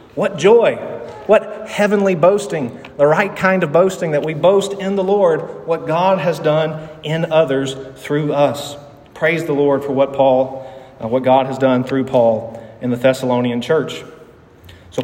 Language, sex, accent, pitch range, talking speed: English, male, American, 130-180 Hz, 170 wpm